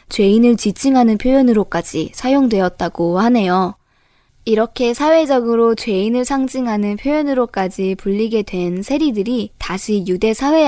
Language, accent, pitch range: Korean, native, 190-250 Hz